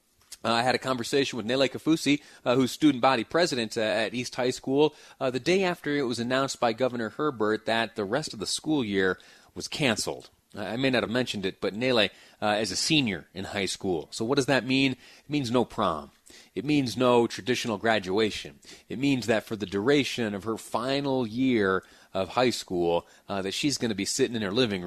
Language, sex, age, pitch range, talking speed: English, male, 30-49, 105-130 Hz, 215 wpm